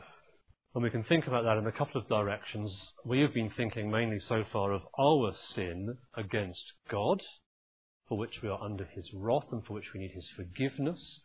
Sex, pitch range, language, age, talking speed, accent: male, 100-135 Hz, English, 40-59, 195 wpm, British